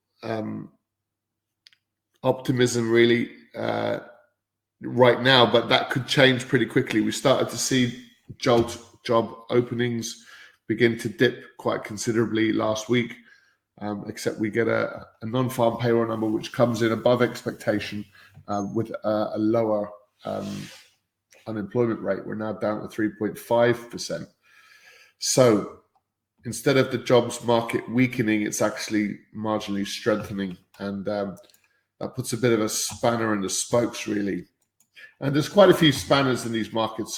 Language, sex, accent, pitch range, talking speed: English, male, British, 110-125 Hz, 140 wpm